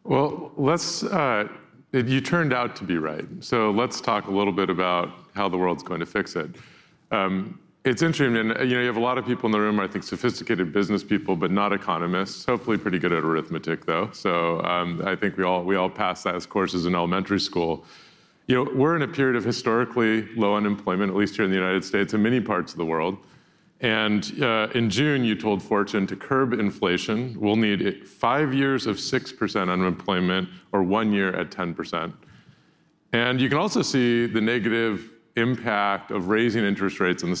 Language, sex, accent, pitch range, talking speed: English, male, American, 95-120 Hz, 200 wpm